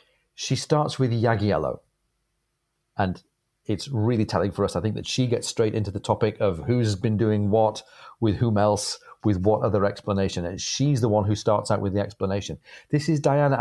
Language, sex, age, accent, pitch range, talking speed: English, male, 40-59, British, 105-140 Hz, 195 wpm